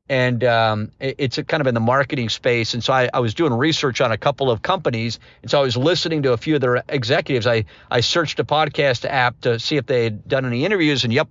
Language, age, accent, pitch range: English, 50-69, American, 130-170 Hz